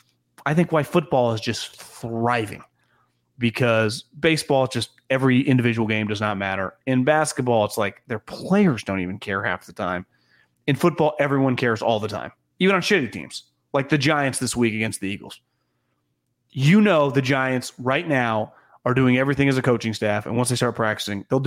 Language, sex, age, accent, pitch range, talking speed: English, male, 30-49, American, 110-145 Hz, 185 wpm